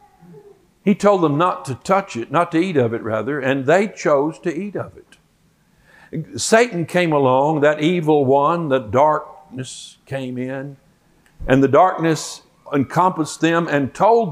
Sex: male